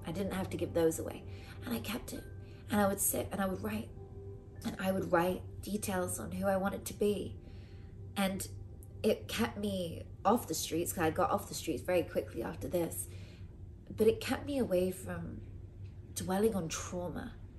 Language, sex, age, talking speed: English, female, 20-39, 190 wpm